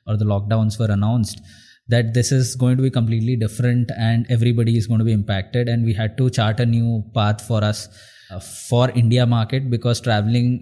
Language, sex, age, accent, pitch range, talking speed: English, male, 20-39, Indian, 105-120 Hz, 205 wpm